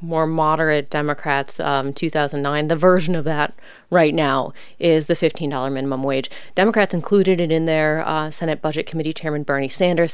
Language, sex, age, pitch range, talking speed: English, female, 30-49, 155-190 Hz, 165 wpm